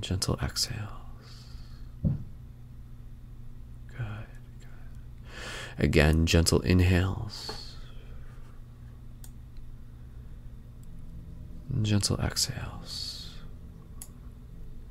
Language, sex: English, male